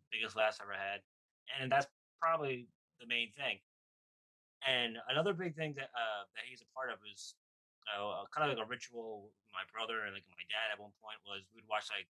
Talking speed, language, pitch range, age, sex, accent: 210 wpm, English, 105-135 Hz, 20-39, male, American